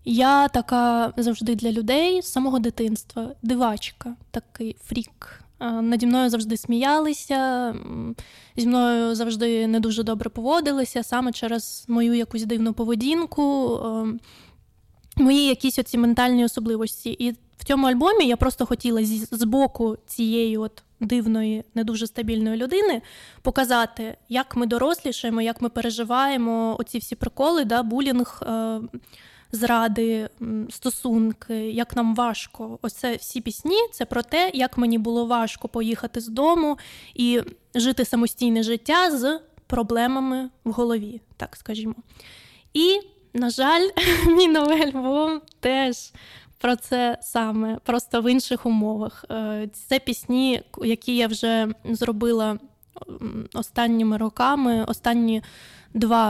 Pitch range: 230-260 Hz